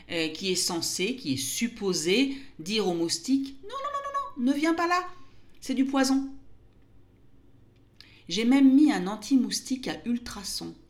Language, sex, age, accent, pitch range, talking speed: French, female, 40-59, French, 145-230 Hz, 160 wpm